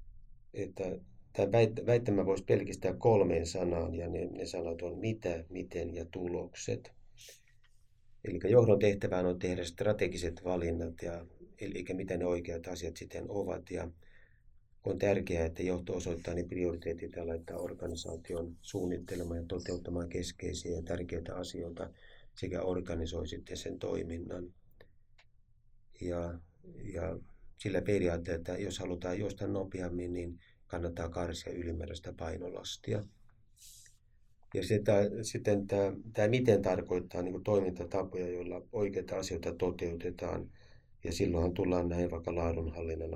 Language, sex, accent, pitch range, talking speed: Finnish, male, native, 85-100 Hz, 125 wpm